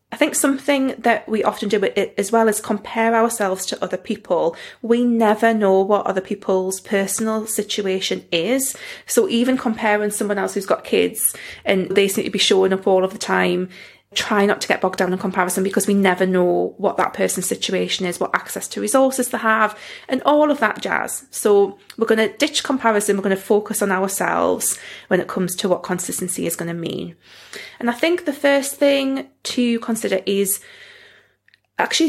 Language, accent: English, British